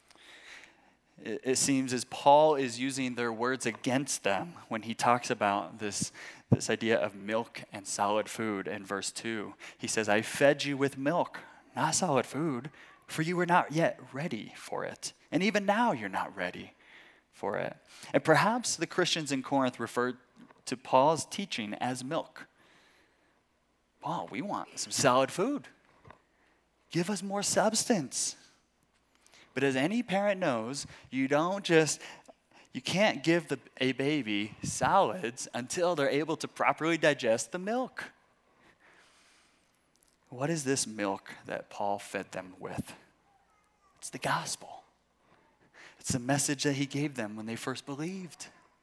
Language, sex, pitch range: English, male, 120-165 Hz